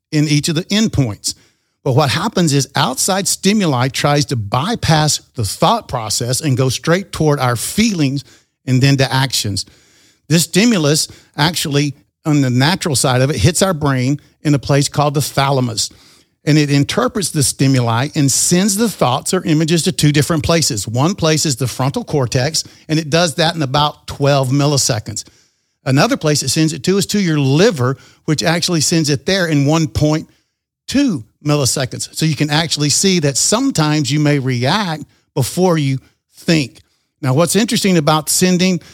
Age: 50-69